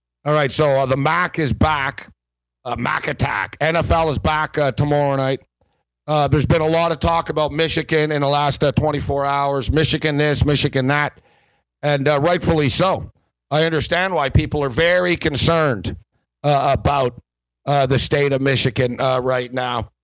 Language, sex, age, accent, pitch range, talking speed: English, male, 60-79, American, 125-160 Hz, 170 wpm